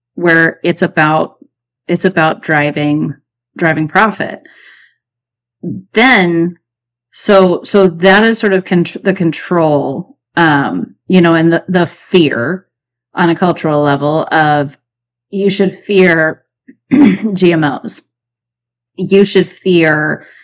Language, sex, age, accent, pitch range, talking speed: English, female, 30-49, American, 145-180 Hz, 110 wpm